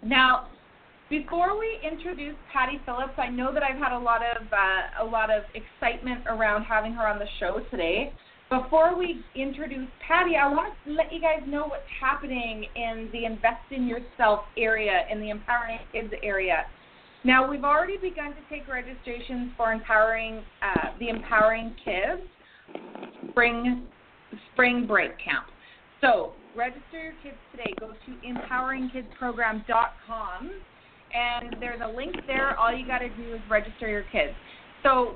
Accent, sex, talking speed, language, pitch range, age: American, female, 155 wpm, English, 220-280 Hz, 30-49